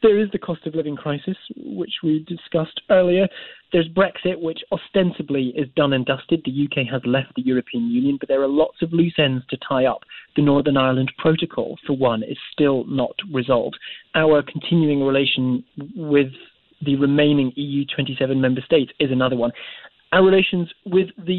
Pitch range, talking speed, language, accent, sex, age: 135-170 Hz, 175 wpm, English, British, male, 30-49